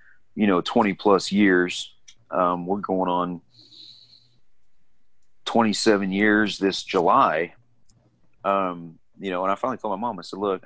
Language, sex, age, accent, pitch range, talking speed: English, male, 40-59, American, 90-120 Hz, 140 wpm